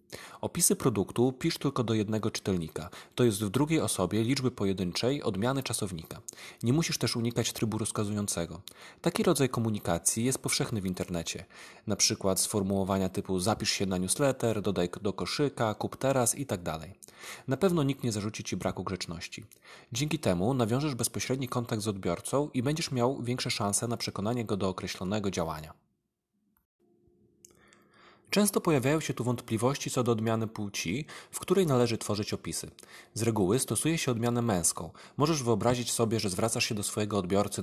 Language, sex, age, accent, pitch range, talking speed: Polish, male, 30-49, native, 100-130 Hz, 155 wpm